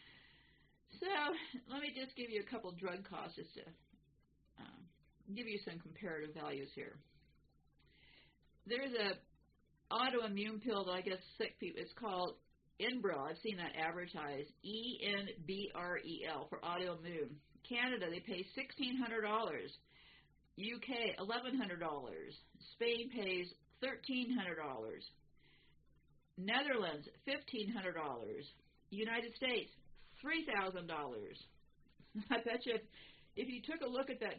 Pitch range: 180-250 Hz